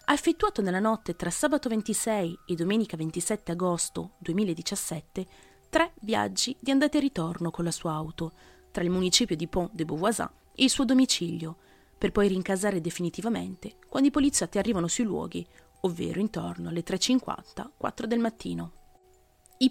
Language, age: Italian, 30-49